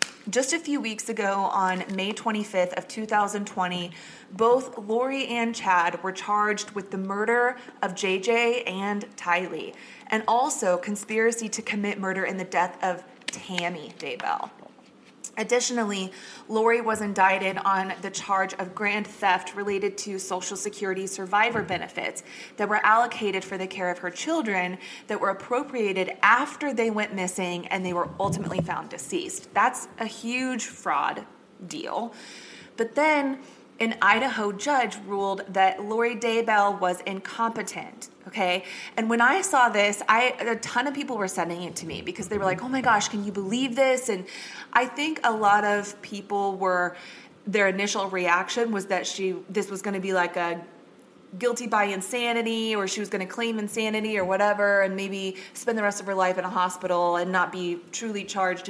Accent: American